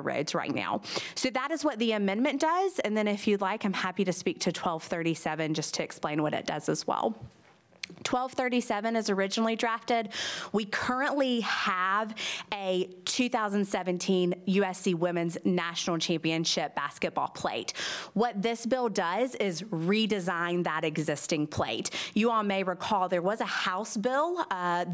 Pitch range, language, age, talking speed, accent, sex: 175-220 Hz, English, 30-49, 150 wpm, American, female